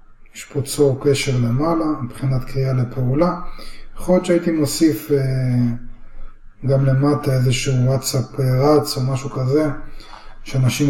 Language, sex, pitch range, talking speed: Hebrew, male, 110-145 Hz, 120 wpm